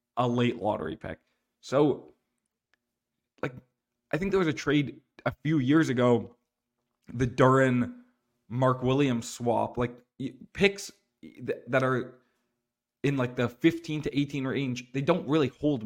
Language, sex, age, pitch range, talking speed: English, male, 20-39, 120-145 Hz, 130 wpm